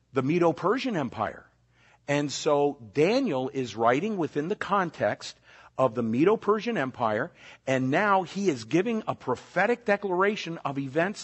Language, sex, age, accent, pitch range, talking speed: Italian, male, 50-69, American, 130-175 Hz, 135 wpm